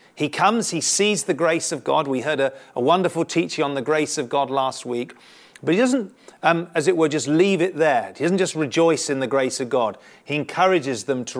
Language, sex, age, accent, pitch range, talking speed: English, male, 40-59, British, 135-180 Hz, 235 wpm